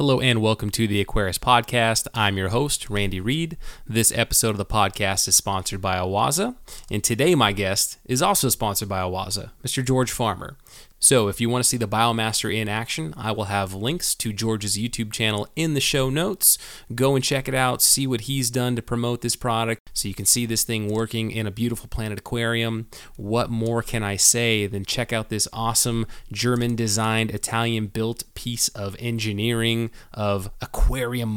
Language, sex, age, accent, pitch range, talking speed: English, male, 30-49, American, 105-130 Hz, 185 wpm